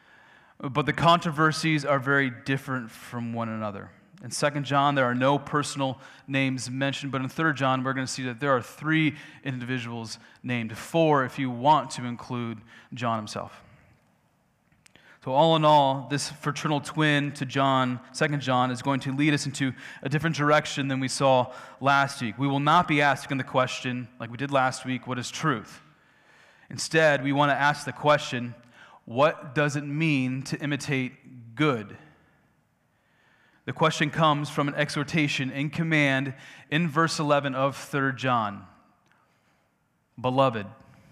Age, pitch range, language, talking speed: 30-49, 125-150 Hz, English, 160 wpm